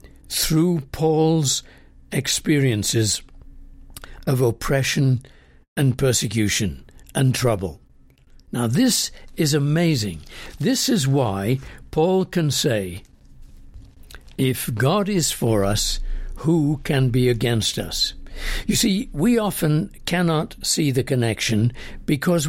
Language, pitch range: English, 115-175 Hz